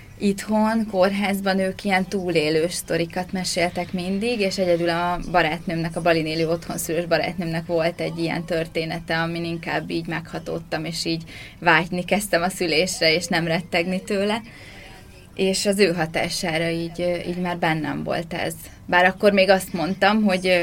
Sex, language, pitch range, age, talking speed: female, Hungarian, 165-185 Hz, 20-39, 145 wpm